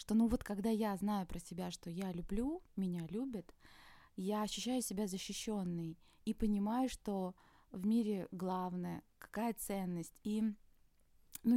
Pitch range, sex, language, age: 190-230 Hz, female, Russian, 20-39